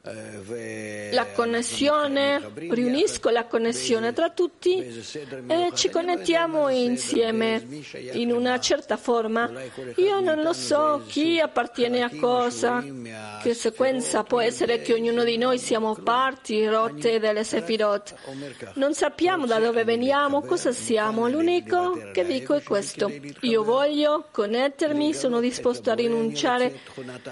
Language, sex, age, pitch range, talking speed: Italian, female, 40-59, 230-310 Hz, 120 wpm